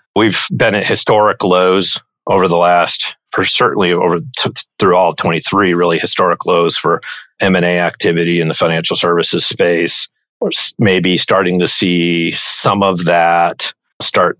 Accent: American